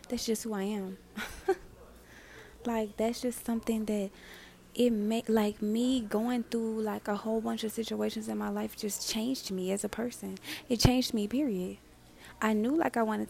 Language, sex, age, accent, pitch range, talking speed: English, female, 20-39, American, 200-240 Hz, 180 wpm